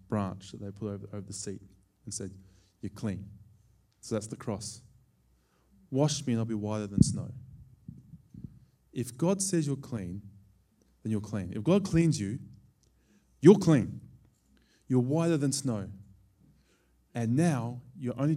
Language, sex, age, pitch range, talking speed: English, male, 20-39, 100-145 Hz, 150 wpm